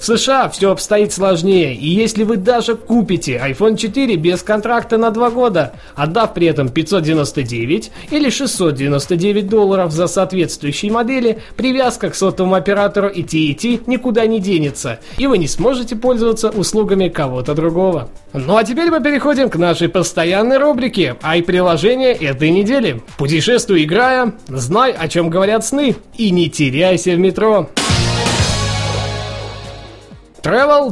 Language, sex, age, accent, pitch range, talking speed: Russian, male, 20-39, native, 165-230 Hz, 140 wpm